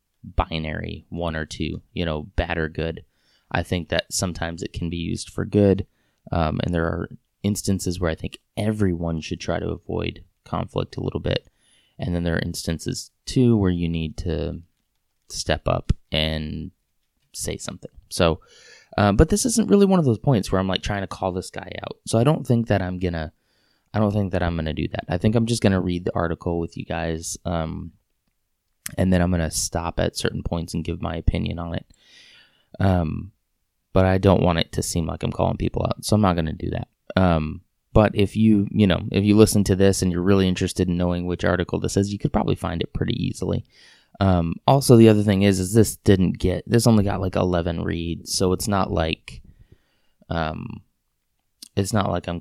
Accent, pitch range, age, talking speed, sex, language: American, 85-100 Hz, 20-39, 210 wpm, male, English